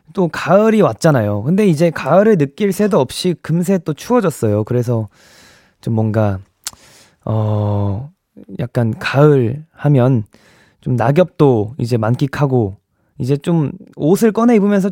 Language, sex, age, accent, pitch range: Korean, male, 20-39, native, 120-185 Hz